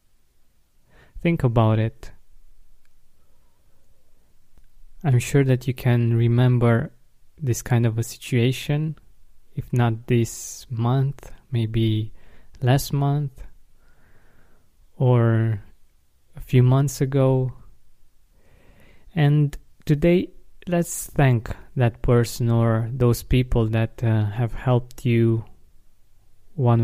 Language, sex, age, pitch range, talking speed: English, male, 20-39, 110-130 Hz, 90 wpm